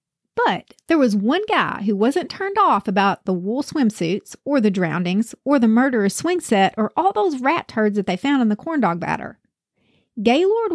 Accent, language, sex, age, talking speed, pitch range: American, English, female, 40-59, 190 wpm, 210-295 Hz